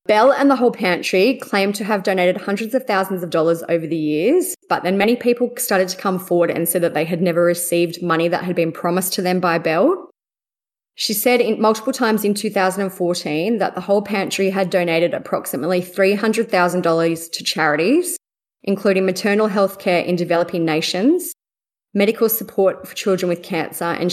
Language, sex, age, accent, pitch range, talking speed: English, female, 20-39, Australian, 170-210 Hz, 175 wpm